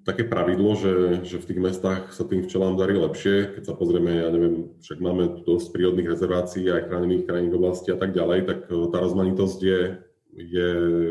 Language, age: Slovak, 30-49